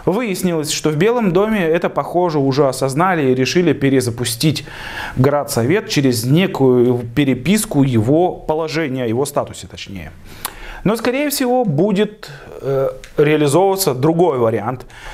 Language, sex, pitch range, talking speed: Russian, male, 130-180 Hz, 115 wpm